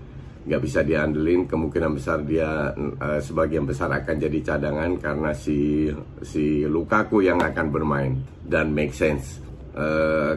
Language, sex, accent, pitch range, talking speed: Indonesian, male, native, 75-85 Hz, 135 wpm